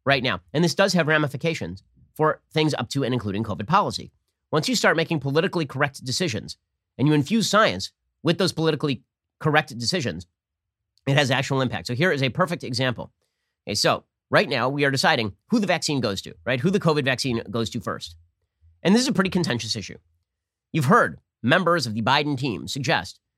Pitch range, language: 110-155 Hz, English